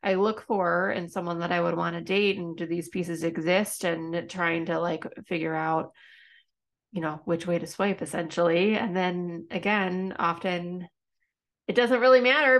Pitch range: 185-220 Hz